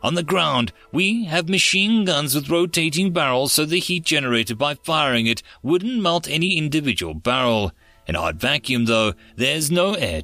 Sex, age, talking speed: male, 30-49, 170 wpm